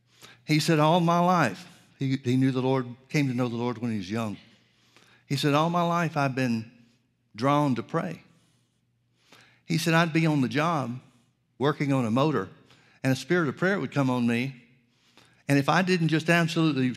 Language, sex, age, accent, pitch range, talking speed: English, male, 60-79, American, 110-140 Hz, 195 wpm